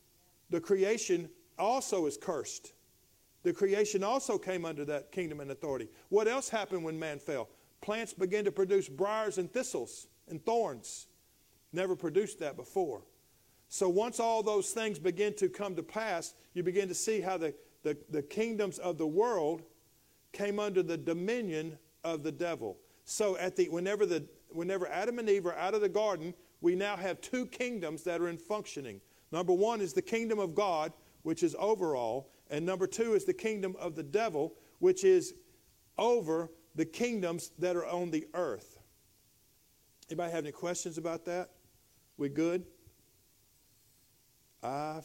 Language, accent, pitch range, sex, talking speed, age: English, American, 160-210 Hz, male, 165 wpm, 50-69